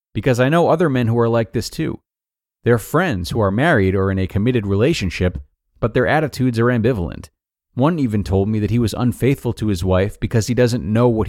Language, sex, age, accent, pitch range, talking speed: English, male, 30-49, American, 95-120 Hz, 220 wpm